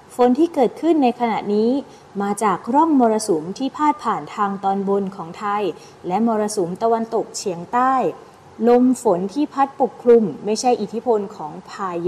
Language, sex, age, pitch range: Thai, female, 20-39, 200-250 Hz